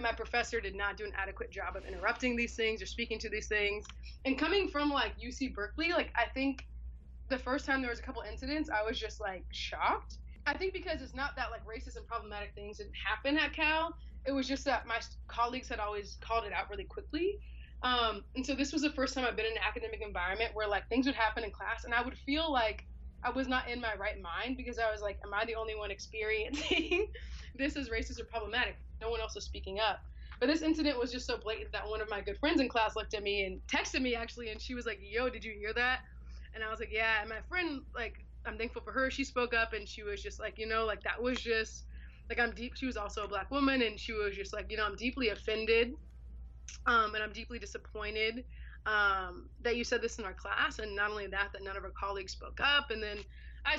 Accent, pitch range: American, 210-255 Hz